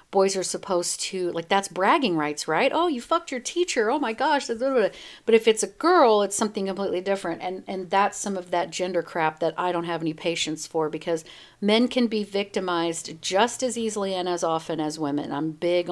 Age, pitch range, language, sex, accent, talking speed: 50-69, 170-250 Hz, English, female, American, 210 wpm